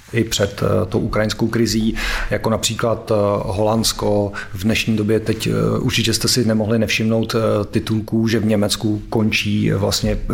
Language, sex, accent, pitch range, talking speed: Czech, male, native, 105-115 Hz, 135 wpm